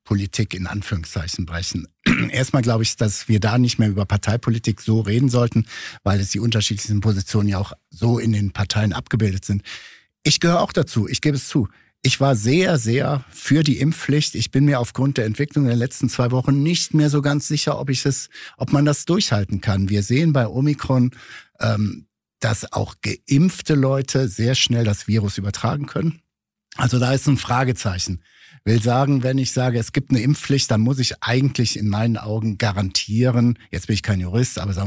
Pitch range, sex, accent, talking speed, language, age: 110-140 Hz, male, German, 190 wpm, German, 60-79